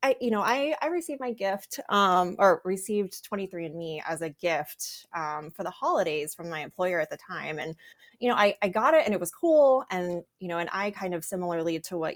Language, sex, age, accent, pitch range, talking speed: English, female, 20-39, American, 165-220 Hz, 235 wpm